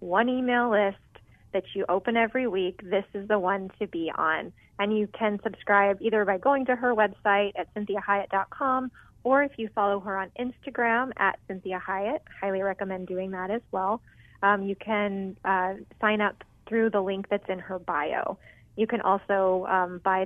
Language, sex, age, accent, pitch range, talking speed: English, female, 30-49, American, 195-235 Hz, 180 wpm